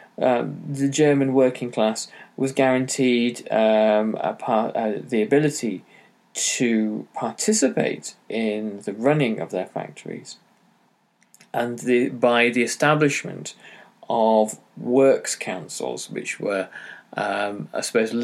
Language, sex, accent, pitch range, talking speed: English, male, British, 110-140 Hz, 110 wpm